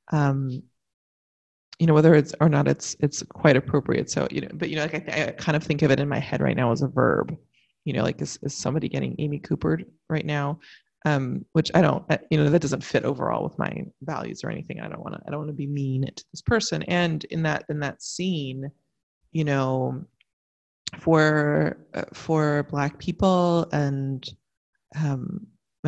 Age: 30-49